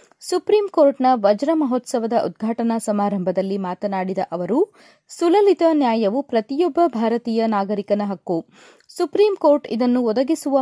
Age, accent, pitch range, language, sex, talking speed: 30-49, native, 215-310 Hz, Kannada, female, 90 wpm